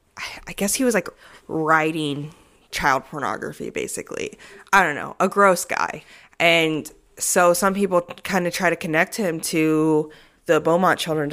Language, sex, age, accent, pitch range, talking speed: English, female, 20-39, American, 155-190 Hz, 155 wpm